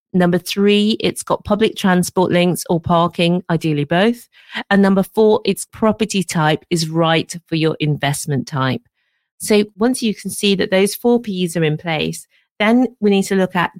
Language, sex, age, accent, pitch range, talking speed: English, female, 40-59, British, 160-205 Hz, 180 wpm